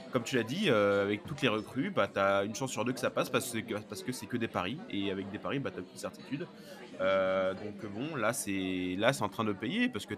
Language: French